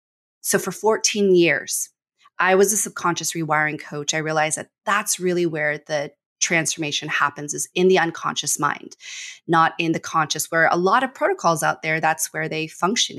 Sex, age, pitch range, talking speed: female, 30-49, 160-190 Hz, 175 wpm